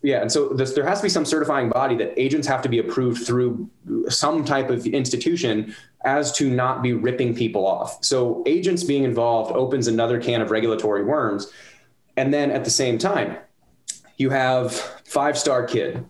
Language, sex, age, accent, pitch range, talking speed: English, male, 20-39, American, 115-135 Hz, 180 wpm